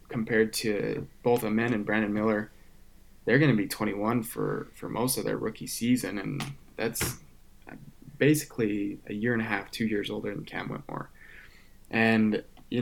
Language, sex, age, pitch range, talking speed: English, male, 20-39, 105-115 Hz, 170 wpm